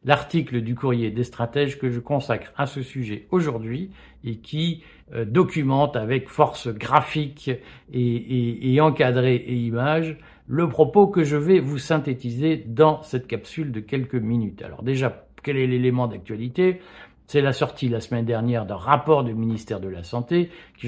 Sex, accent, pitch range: male, French, 120-155 Hz